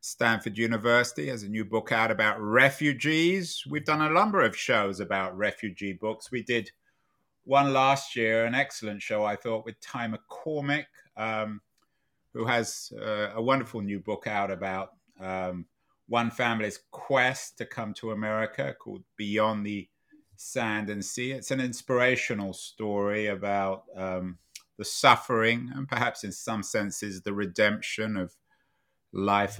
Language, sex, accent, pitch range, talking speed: English, male, British, 100-120 Hz, 145 wpm